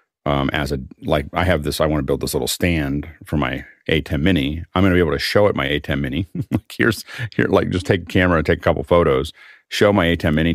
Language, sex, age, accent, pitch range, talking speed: English, male, 40-59, American, 75-85 Hz, 260 wpm